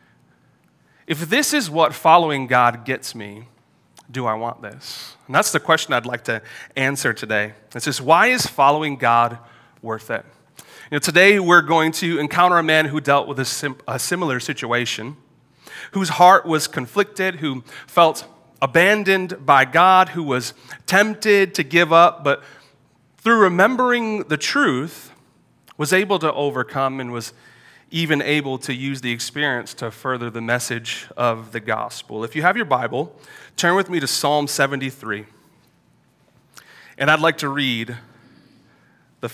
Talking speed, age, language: 155 wpm, 30-49, English